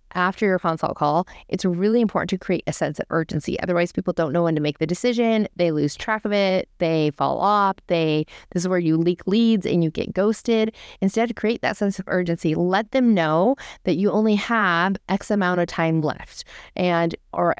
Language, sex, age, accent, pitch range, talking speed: English, female, 30-49, American, 165-205 Hz, 210 wpm